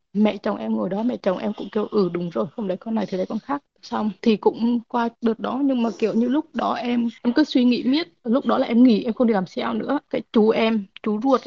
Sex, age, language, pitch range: female, 20-39, Vietnamese, 210-245 Hz